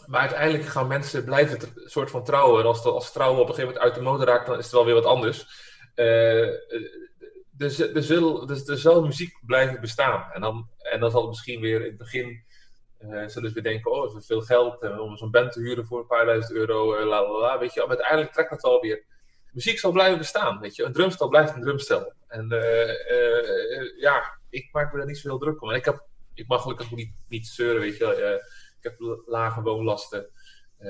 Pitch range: 115-160 Hz